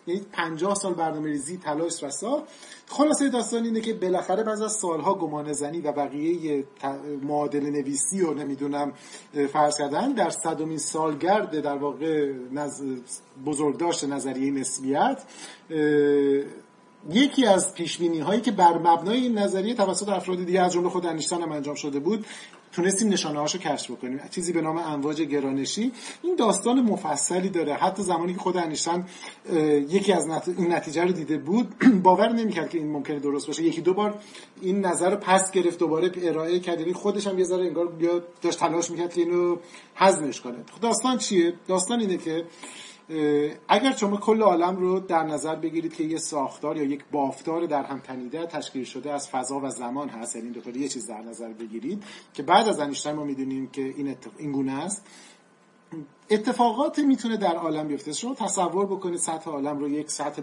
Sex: male